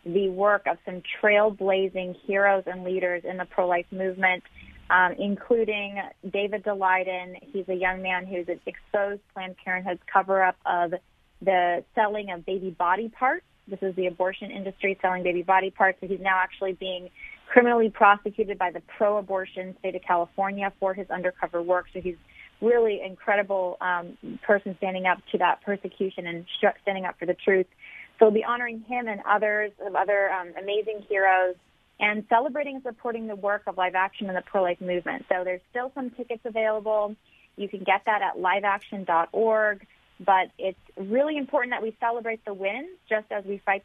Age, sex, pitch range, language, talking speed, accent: 20-39, female, 185-215 Hz, English, 170 wpm, American